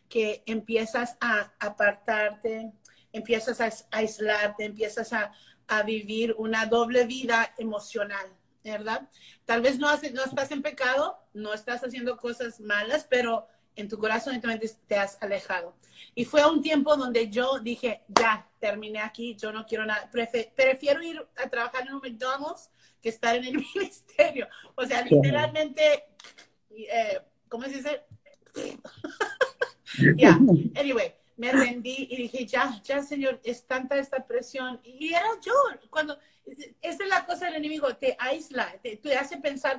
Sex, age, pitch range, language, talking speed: female, 40-59, 220-275 Hz, Spanish, 155 wpm